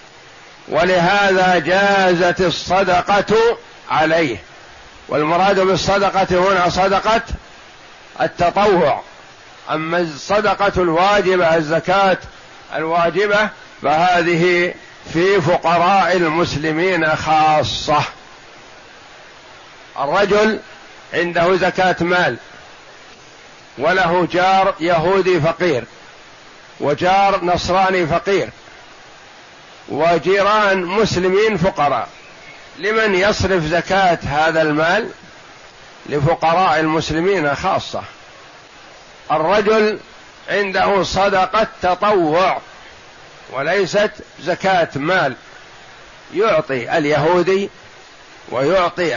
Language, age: Arabic, 50-69